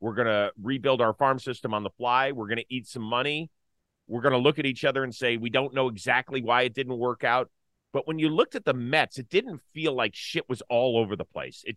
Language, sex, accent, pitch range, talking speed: English, male, American, 120-155 Hz, 265 wpm